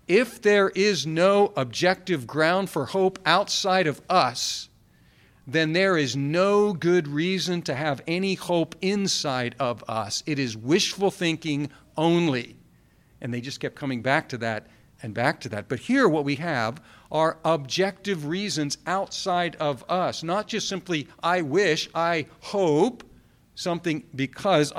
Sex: male